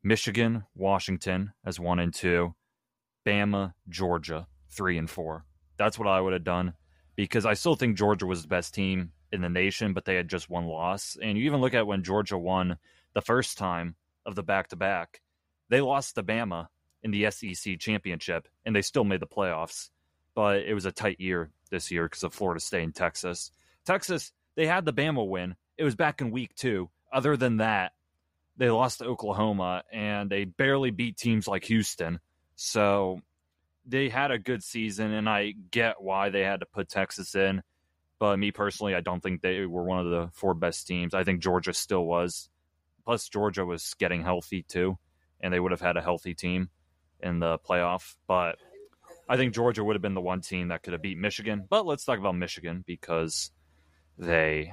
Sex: male